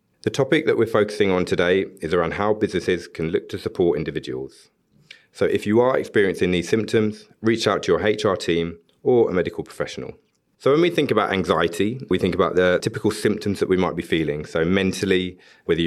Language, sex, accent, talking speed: English, male, British, 200 wpm